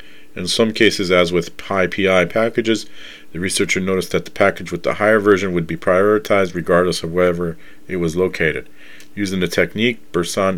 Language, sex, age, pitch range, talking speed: English, male, 40-59, 85-105 Hz, 175 wpm